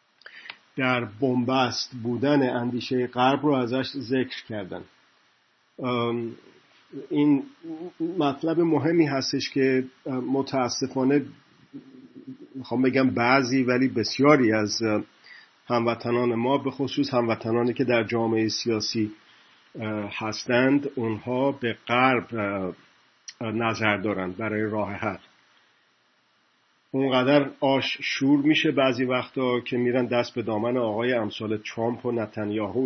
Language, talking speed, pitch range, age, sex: Persian, 100 wpm, 115-140 Hz, 50-69, male